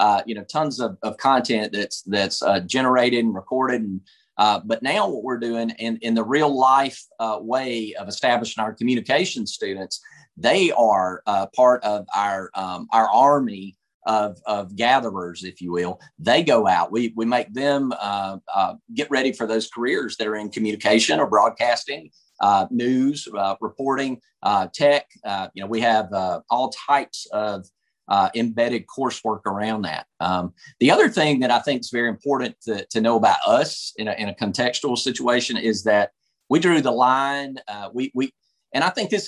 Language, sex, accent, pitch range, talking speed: English, male, American, 105-135 Hz, 180 wpm